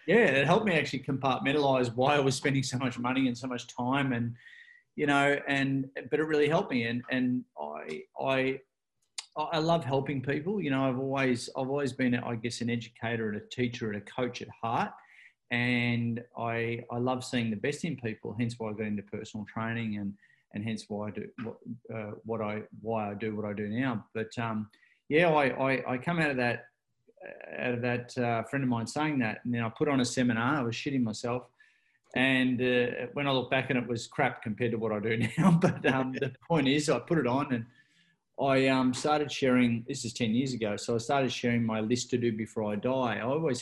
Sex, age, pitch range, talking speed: male, 30-49, 115-135 Hz, 225 wpm